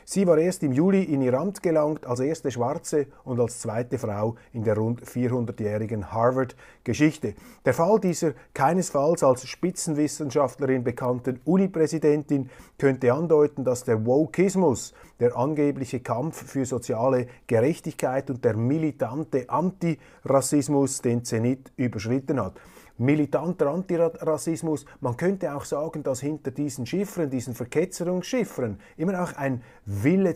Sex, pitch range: male, 125-165 Hz